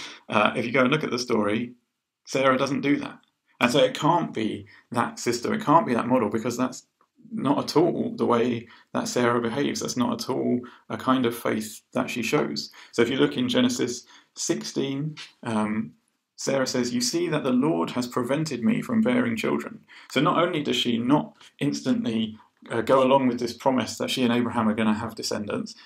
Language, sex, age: English, male, 30-49